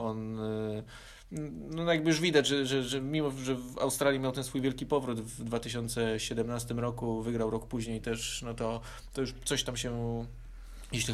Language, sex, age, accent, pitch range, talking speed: Polish, male, 20-39, native, 115-125 Hz, 170 wpm